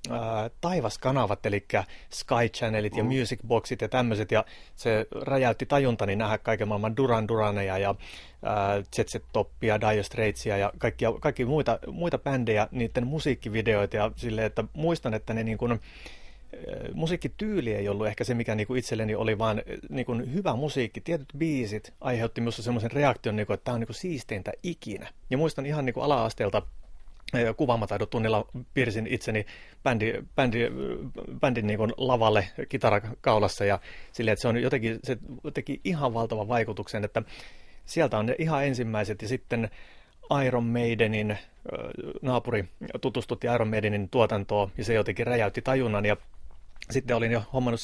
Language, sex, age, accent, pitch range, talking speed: Finnish, male, 30-49, native, 110-130 Hz, 150 wpm